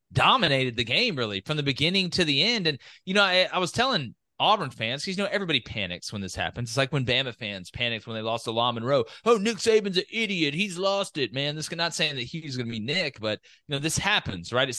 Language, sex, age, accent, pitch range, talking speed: English, male, 30-49, American, 115-170 Hz, 260 wpm